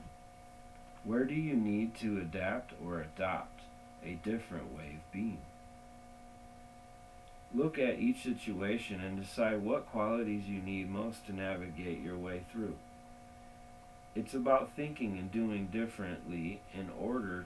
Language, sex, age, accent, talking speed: English, male, 40-59, American, 125 wpm